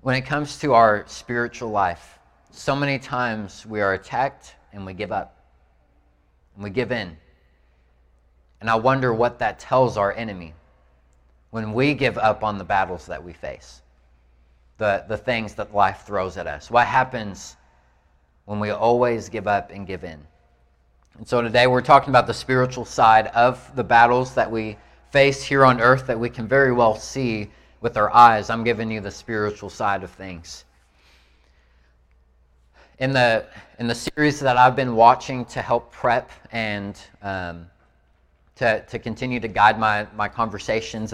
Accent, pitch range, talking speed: American, 80-125 Hz, 165 wpm